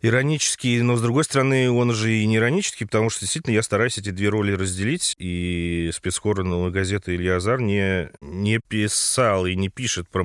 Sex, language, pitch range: male, Russian, 90-115 Hz